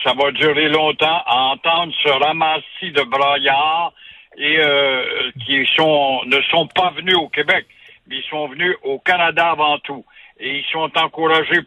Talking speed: 165 wpm